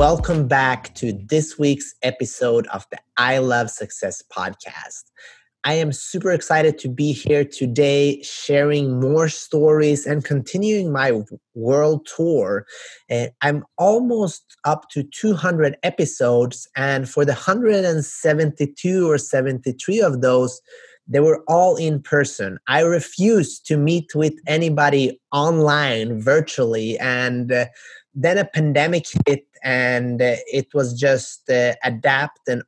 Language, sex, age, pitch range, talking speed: English, male, 30-49, 130-160 Hz, 125 wpm